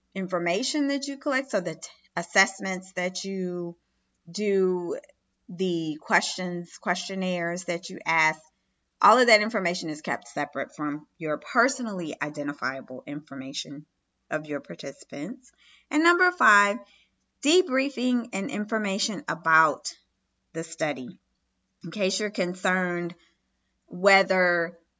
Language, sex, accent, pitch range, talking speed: English, female, American, 170-225 Hz, 110 wpm